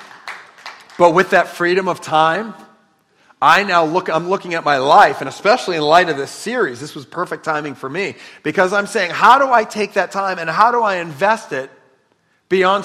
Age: 40-59